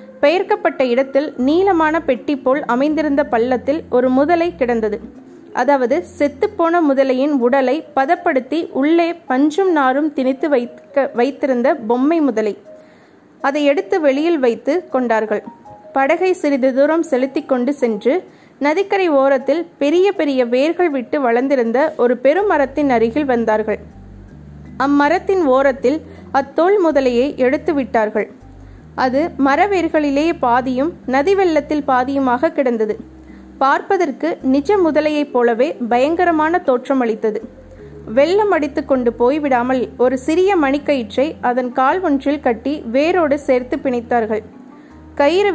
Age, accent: 20-39, native